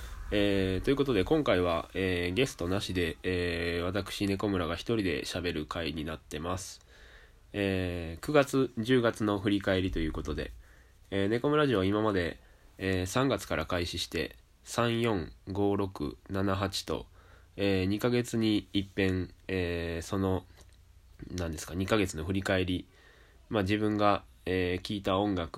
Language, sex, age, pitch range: Japanese, male, 20-39, 85-105 Hz